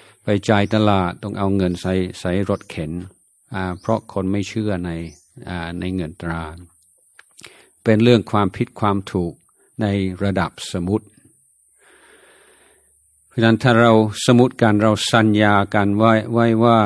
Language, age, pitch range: Thai, 60-79, 95-115 Hz